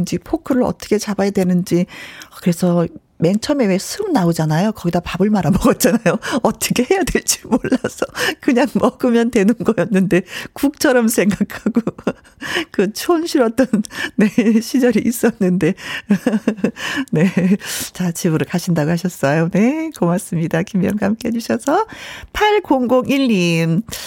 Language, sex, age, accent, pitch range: Korean, female, 40-59, native, 180-270 Hz